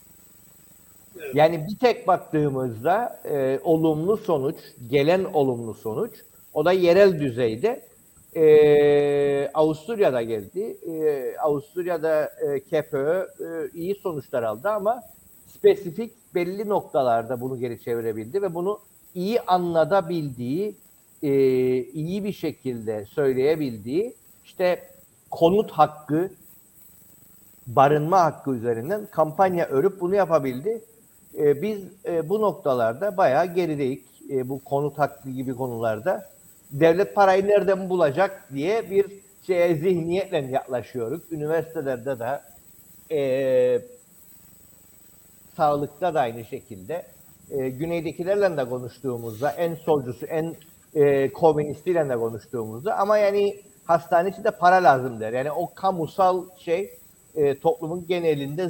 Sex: male